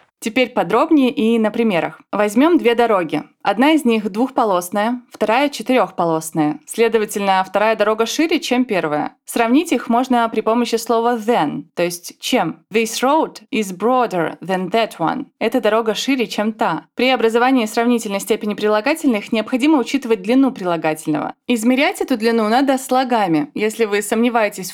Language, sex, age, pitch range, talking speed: Russian, female, 20-39, 205-250 Hz, 145 wpm